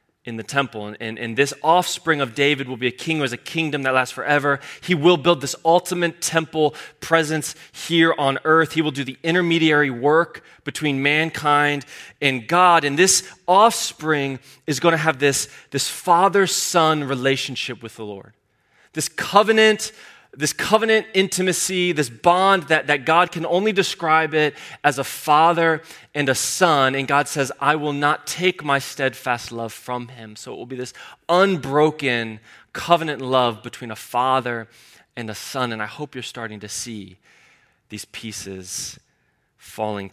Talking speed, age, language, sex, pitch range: 165 wpm, 20-39, English, male, 110-155 Hz